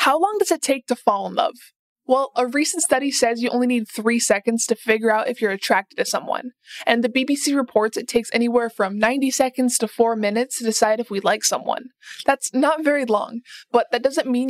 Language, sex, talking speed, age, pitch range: English, female, 225 wpm, 20-39, 225-275 Hz